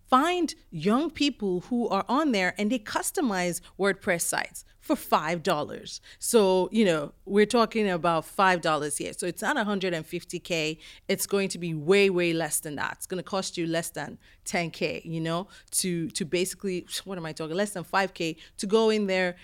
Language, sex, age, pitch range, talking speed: English, female, 30-49, 180-215 Hz, 185 wpm